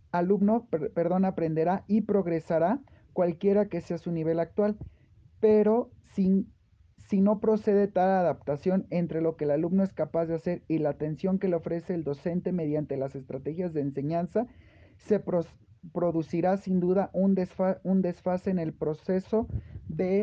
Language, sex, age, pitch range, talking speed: Spanish, male, 40-59, 165-200 Hz, 155 wpm